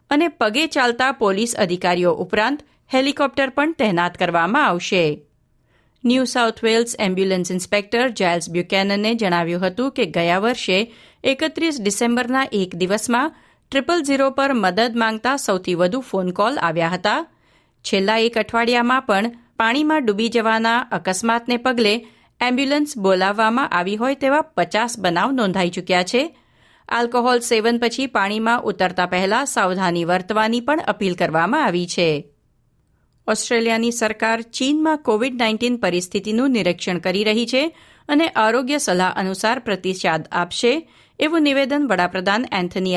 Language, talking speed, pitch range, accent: Gujarati, 125 wpm, 185-250 Hz, native